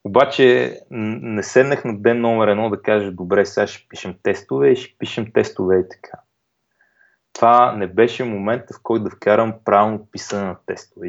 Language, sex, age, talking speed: Bulgarian, male, 20-39, 175 wpm